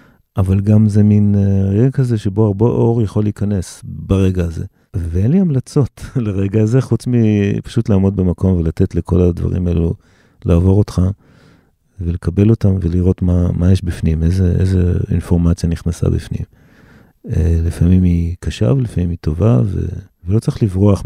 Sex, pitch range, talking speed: male, 90-110 Hz, 140 wpm